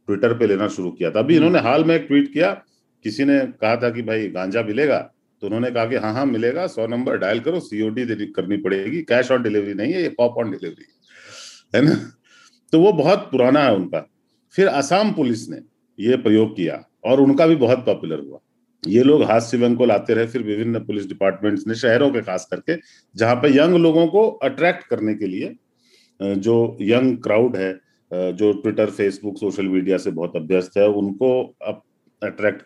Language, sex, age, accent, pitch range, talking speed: Hindi, male, 40-59, native, 105-140 Hz, 195 wpm